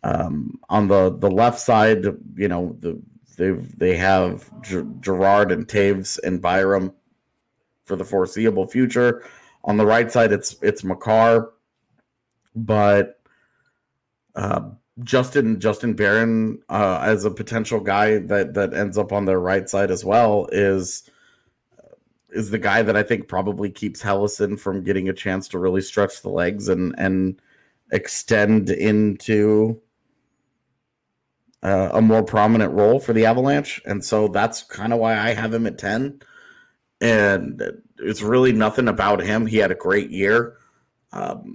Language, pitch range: English, 100-115 Hz